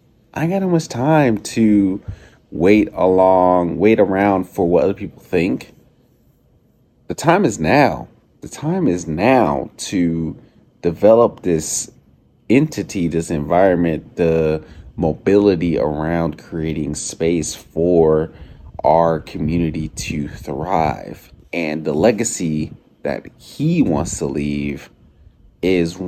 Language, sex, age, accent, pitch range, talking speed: English, male, 30-49, American, 80-100 Hz, 110 wpm